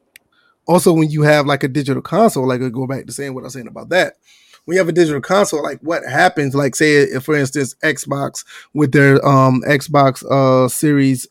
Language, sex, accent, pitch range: English, male, American, 135-165 Hz